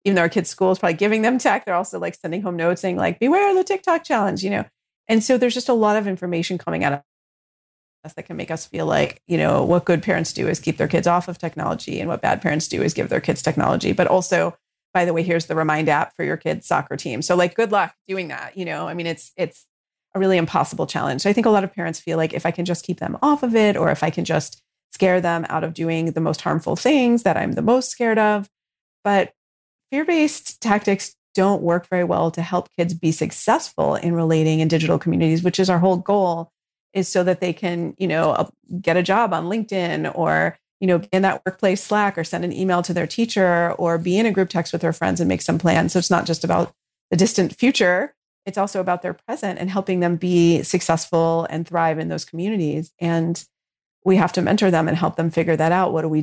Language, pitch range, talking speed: English, 165-195 Hz, 250 wpm